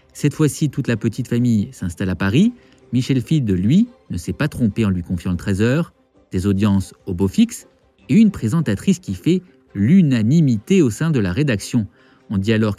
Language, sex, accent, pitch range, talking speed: French, male, French, 105-160 Hz, 190 wpm